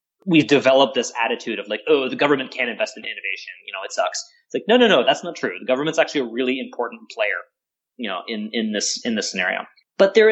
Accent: American